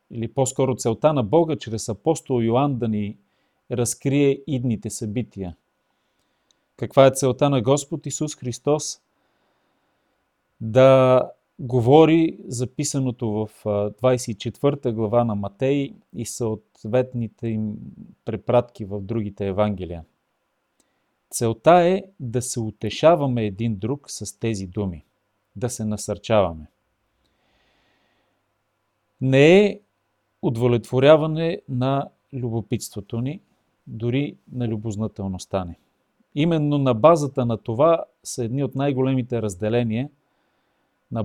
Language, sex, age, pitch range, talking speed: Bulgarian, male, 40-59, 110-140 Hz, 100 wpm